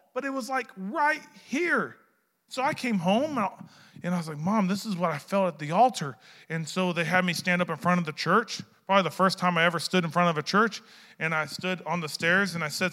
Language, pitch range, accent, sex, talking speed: English, 180-255 Hz, American, male, 270 wpm